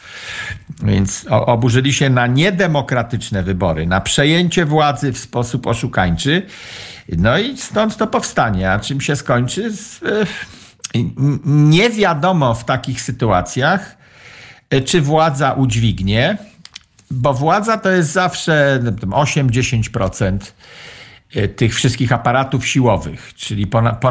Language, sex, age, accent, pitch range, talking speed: Polish, male, 50-69, native, 105-145 Hz, 105 wpm